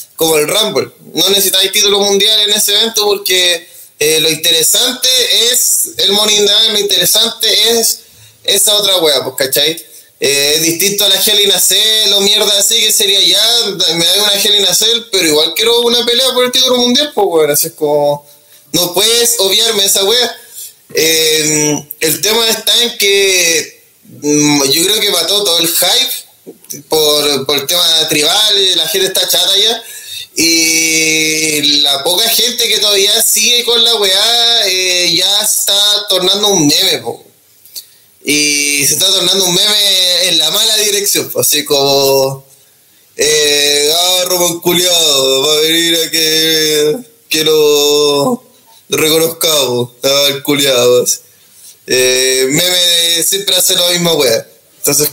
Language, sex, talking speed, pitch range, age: Spanish, male, 150 wpm, 150-215 Hz, 20-39